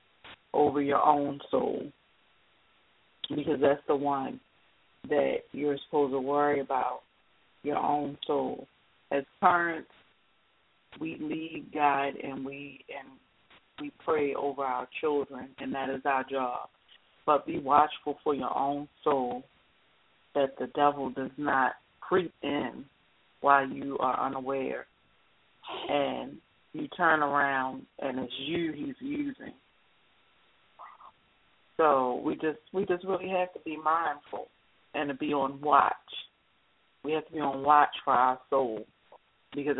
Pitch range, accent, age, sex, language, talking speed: 135-155 Hz, American, 40-59, female, English, 130 wpm